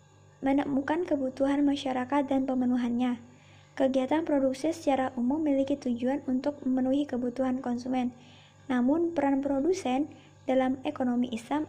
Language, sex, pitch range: Indonesian, male, 245-280 Hz